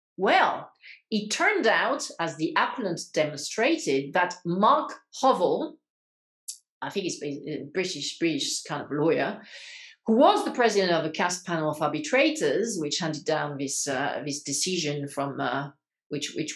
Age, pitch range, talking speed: 40-59, 160-245 Hz, 150 wpm